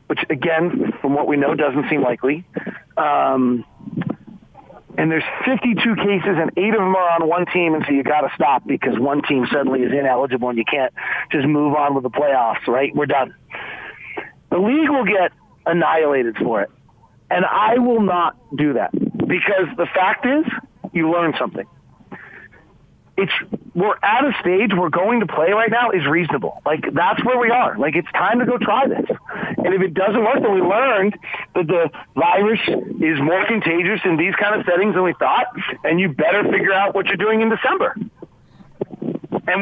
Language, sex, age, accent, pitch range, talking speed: English, male, 40-59, American, 150-220 Hz, 190 wpm